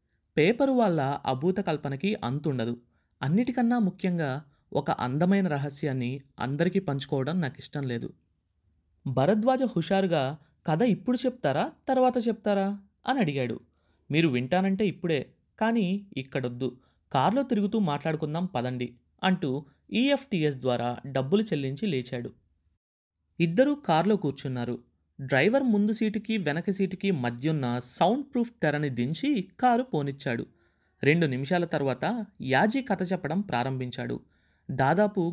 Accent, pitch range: native, 130-200 Hz